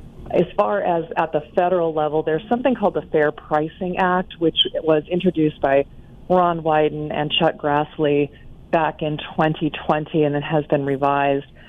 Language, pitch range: English, 145-175 Hz